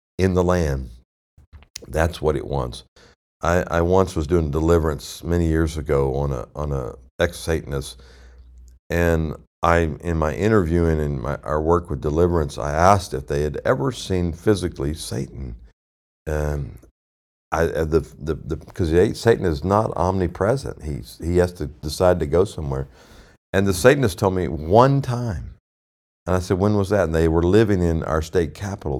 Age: 50-69